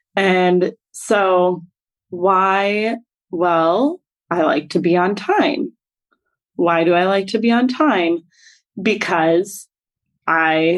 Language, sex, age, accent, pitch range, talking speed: English, female, 20-39, American, 170-225 Hz, 110 wpm